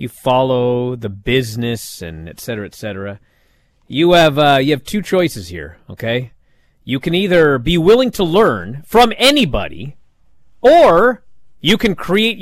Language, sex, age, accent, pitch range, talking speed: English, male, 40-59, American, 110-165 Hz, 150 wpm